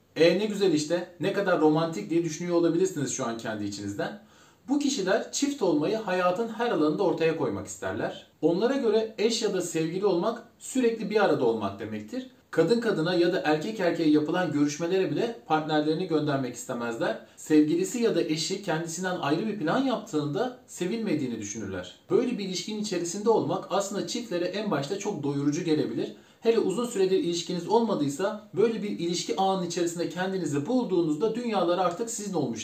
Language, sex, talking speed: Turkish, male, 160 wpm